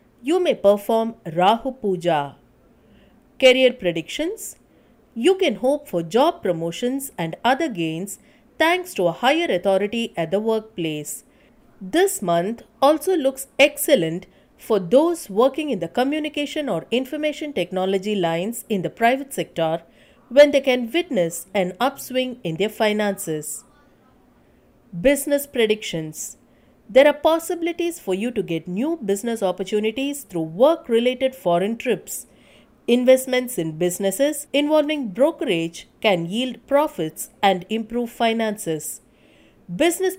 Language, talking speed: English, 120 wpm